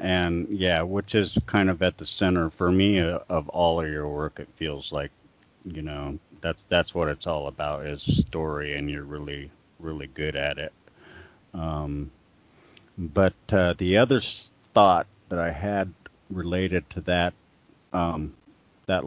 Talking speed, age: 155 wpm, 40-59